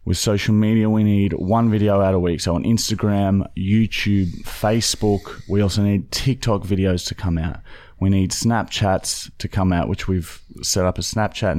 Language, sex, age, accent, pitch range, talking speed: English, male, 20-39, Australian, 95-110 Hz, 180 wpm